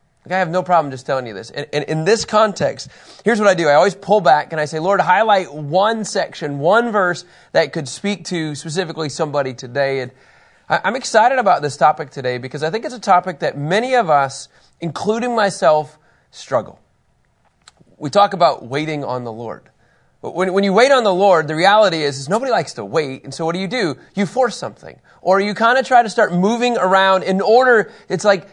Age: 30-49